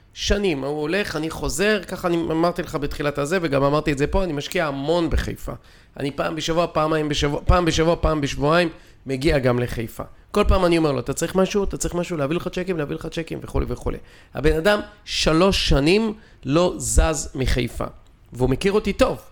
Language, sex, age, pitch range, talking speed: Hebrew, male, 40-59, 135-180 Hz, 200 wpm